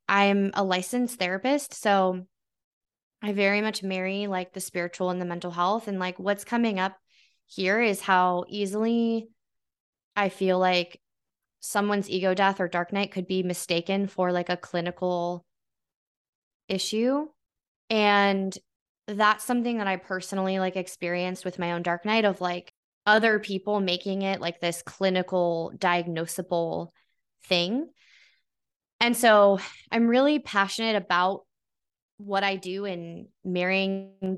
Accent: American